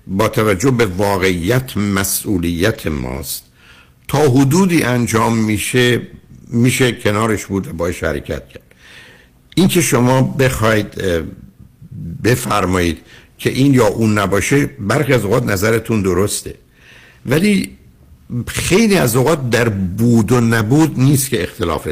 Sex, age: male, 60-79